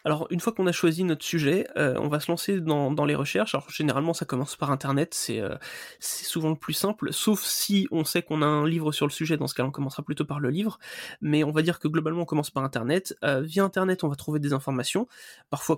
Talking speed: 260 wpm